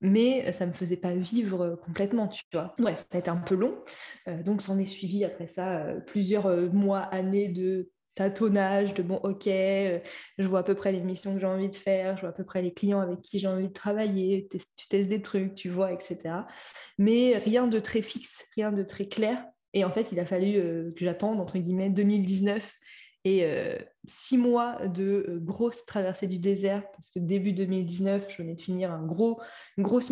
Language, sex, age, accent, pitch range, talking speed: French, female, 20-39, French, 185-210 Hz, 225 wpm